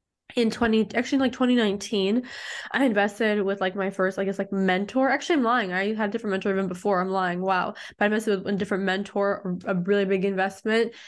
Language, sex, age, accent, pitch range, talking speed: English, female, 20-39, American, 200-230 Hz, 215 wpm